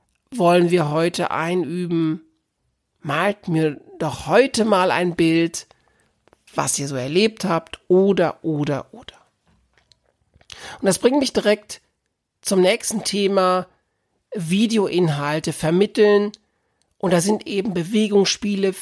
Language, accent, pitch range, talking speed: German, German, 165-205 Hz, 110 wpm